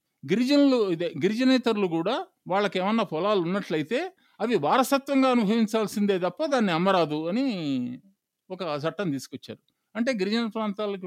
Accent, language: native, Telugu